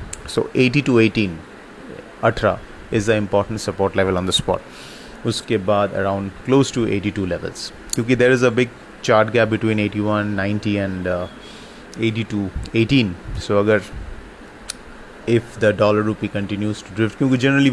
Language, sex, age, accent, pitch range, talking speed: English, male, 30-49, Indian, 100-115 Hz, 140 wpm